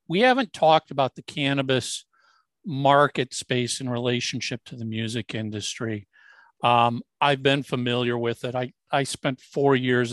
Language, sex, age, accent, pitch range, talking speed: English, male, 50-69, American, 125-165 Hz, 150 wpm